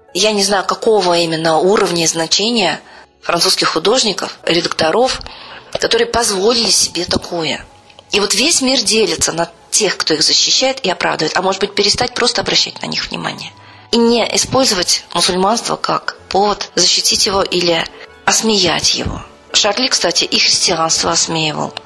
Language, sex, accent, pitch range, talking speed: Russian, female, native, 170-220 Hz, 145 wpm